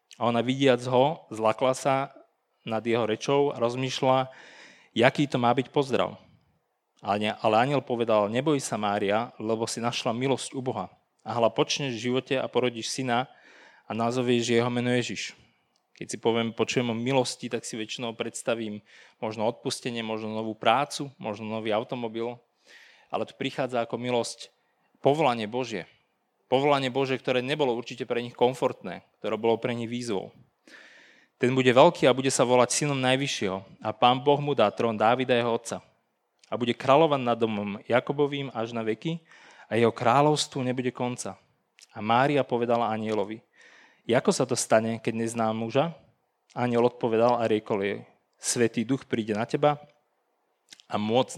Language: Slovak